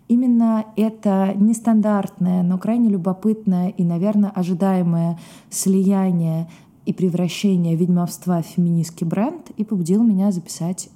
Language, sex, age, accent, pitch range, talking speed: Russian, female, 20-39, native, 175-215 Hz, 110 wpm